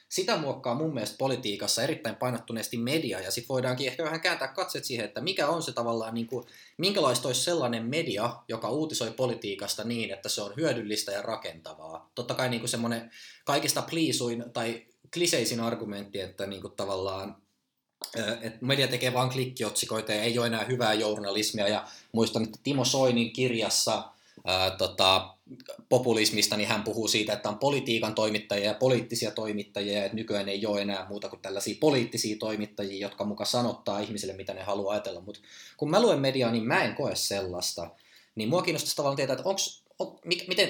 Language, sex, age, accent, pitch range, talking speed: Finnish, male, 20-39, native, 105-130 Hz, 165 wpm